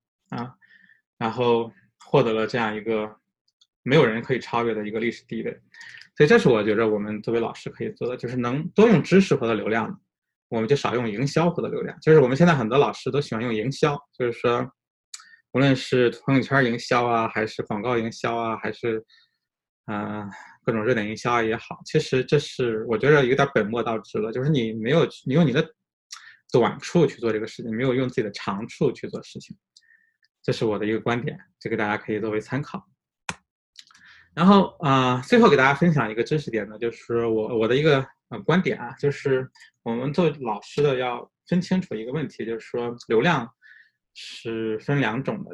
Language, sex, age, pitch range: Chinese, male, 20-39, 115-145 Hz